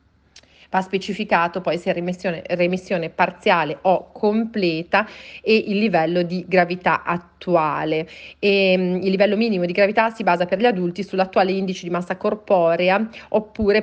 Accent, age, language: native, 40-59, Italian